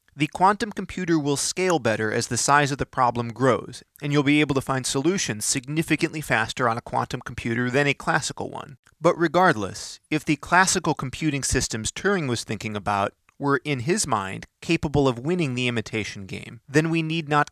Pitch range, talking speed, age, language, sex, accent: 130-165 Hz, 190 wpm, 30-49, English, male, American